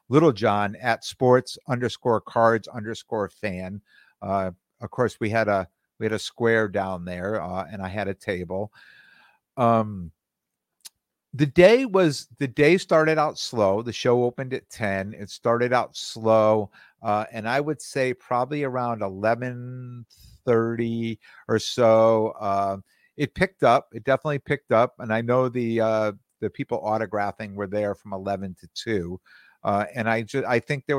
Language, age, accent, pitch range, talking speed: English, 50-69, American, 100-125 Hz, 160 wpm